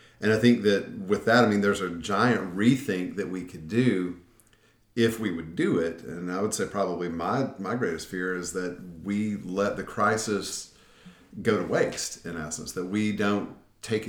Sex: male